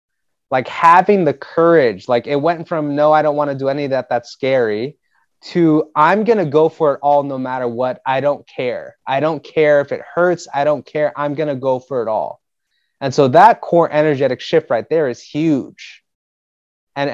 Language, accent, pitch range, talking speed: English, American, 120-155 Hz, 210 wpm